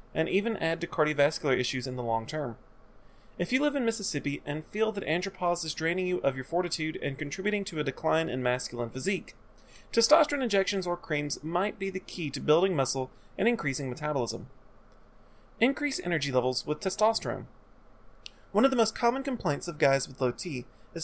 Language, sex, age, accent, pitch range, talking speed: English, male, 30-49, American, 135-195 Hz, 185 wpm